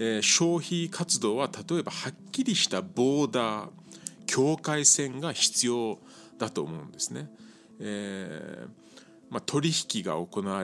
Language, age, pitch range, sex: Japanese, 40-59, 110-180 Hz, male